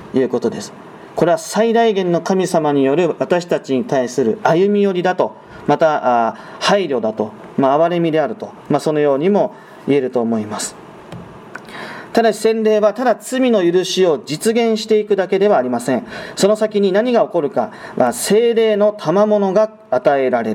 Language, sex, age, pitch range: Japanese, male, 40-59, 170-220 Hz